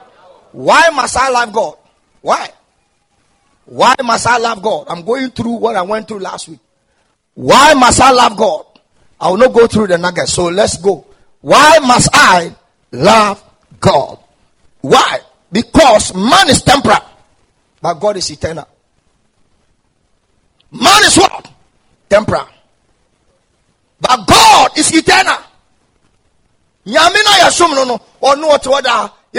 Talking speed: 115 wpm